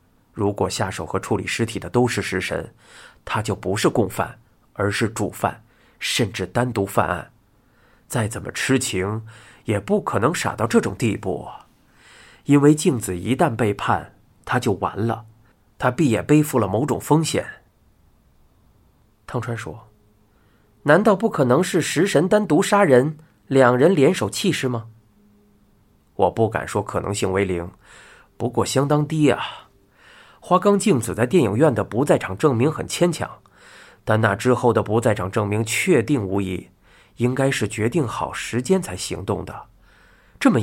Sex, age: male, 30-49